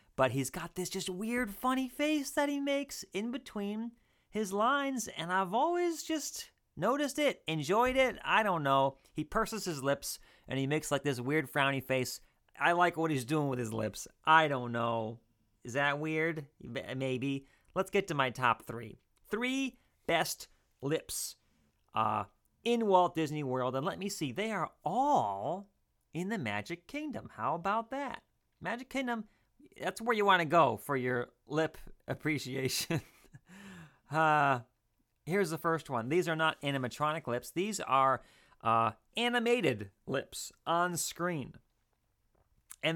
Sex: male